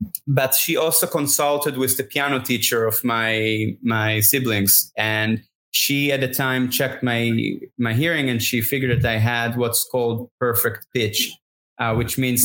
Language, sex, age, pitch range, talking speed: English, male, 20-39, 110-130 Hz, 165 wpm